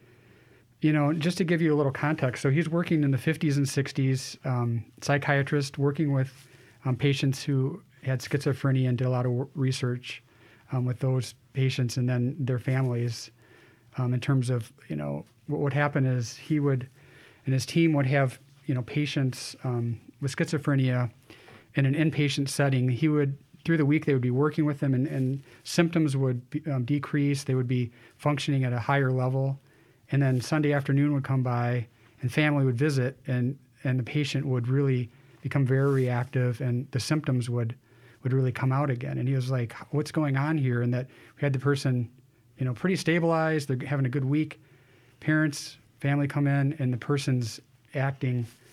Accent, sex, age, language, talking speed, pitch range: American, male, 40-59, English, 185 wpm, 125-145 Hz